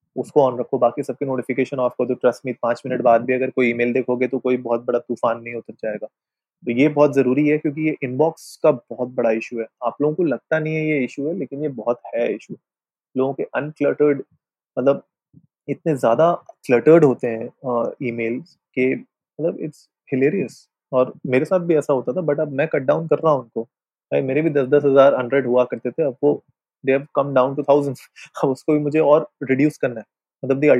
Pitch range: 125-150 Hz